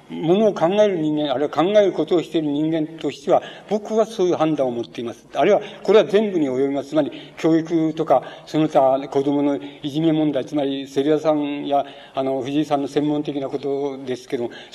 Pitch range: 140-180 Hz